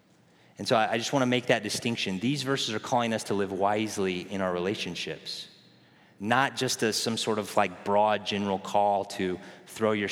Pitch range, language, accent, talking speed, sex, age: 100-125 Hz, English, American, 190 wpm, male, 30-49